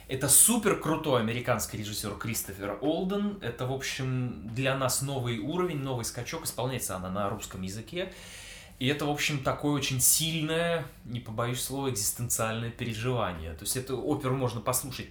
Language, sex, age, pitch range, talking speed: Russian, male, 20-39, 100-130 Hz, 155 wpm